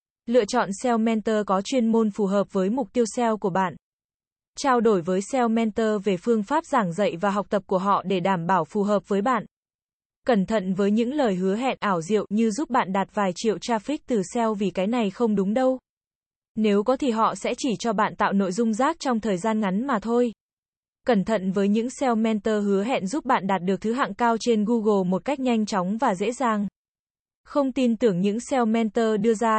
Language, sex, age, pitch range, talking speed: Vietnamese, female, 20-39, 200-240 Hz, 225 wpm